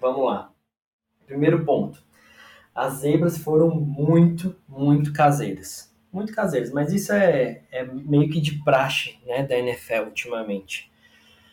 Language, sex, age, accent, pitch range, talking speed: Portuguese, male, 20-39, Brazilian, 130-165 Hz, 125 wpm